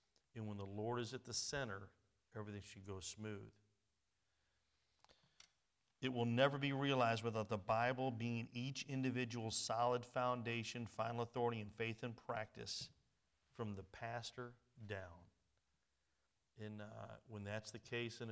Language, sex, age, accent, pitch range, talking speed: English, male, 50-69, American, 100-120 Hz, 140 wpm